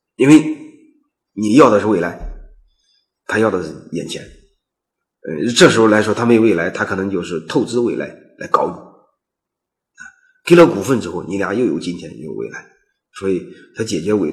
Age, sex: 30-49, male